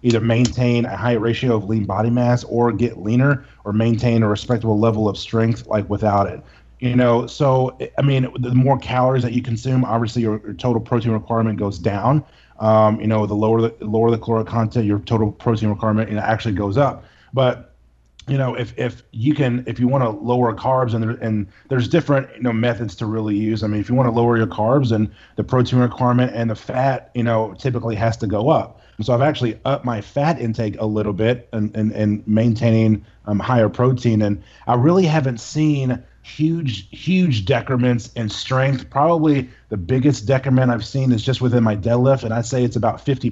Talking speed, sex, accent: 210 wpm, male, American